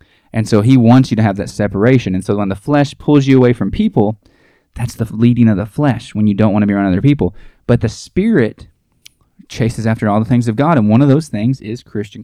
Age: 20-39